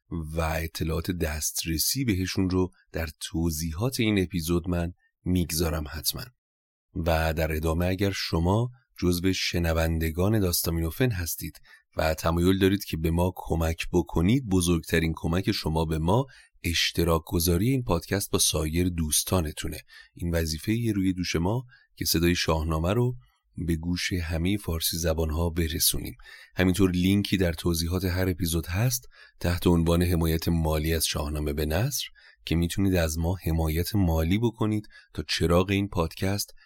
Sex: male